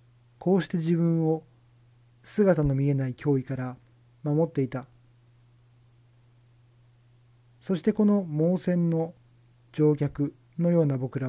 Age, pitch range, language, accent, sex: 40-59, 120-150 Hz, Japanese, native, male